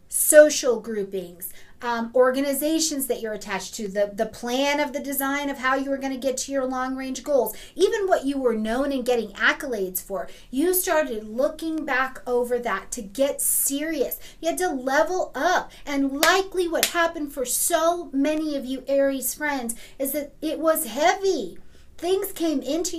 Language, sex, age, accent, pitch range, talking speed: English, female, 40-59, American, 245-305 Hz, 175 wpm